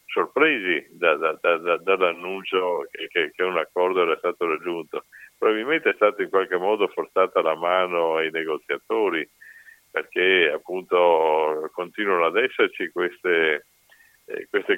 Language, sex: Italian, male